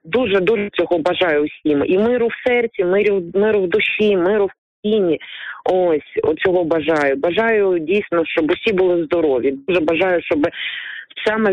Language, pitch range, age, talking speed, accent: Ukrainian, 155-205 Hz, 30-49, 145 wpm, native